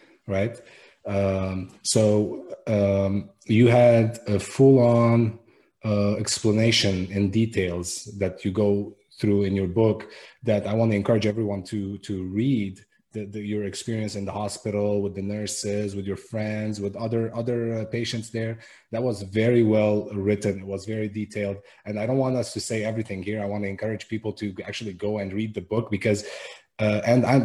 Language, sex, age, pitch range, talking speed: English, male, 30-49, 105-120 Hz, 175 wpm